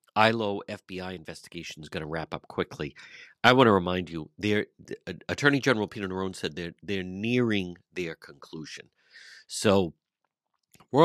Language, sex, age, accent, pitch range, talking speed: English, male, 50-69, American, 85-115 Hz, 140 wpm